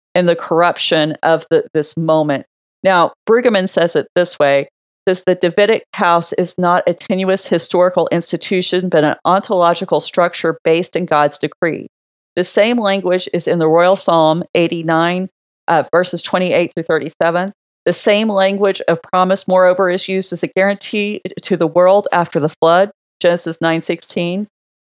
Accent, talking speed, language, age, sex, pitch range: American, 155 wpm, English, 40-59, female, 160-190 Hz